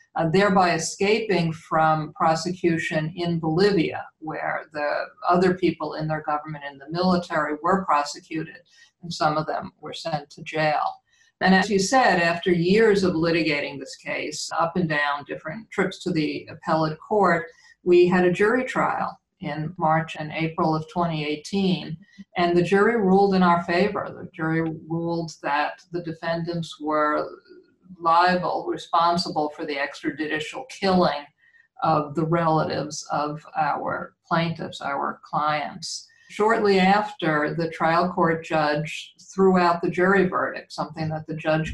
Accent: American